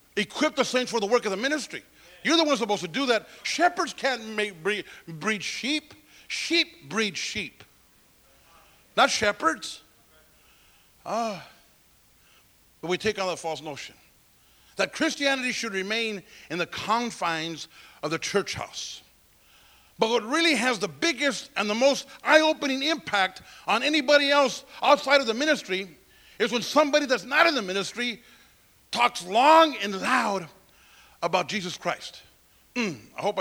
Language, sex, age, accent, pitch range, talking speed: English, male, 50-69, American, 195-285 Hz, 145 wpm